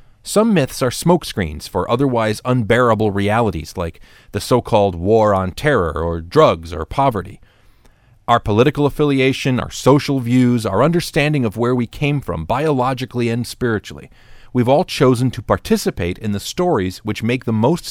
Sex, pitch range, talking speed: male, 95-135 Hz, 155 wpm